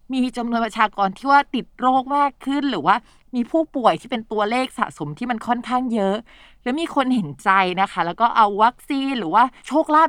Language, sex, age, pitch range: Thai, female, 20-39, 190-255 Hz